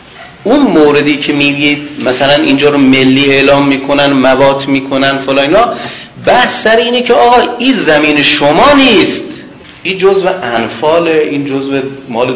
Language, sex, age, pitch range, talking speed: Persian, male, 40-59, 125-195 Hz, 145 wpm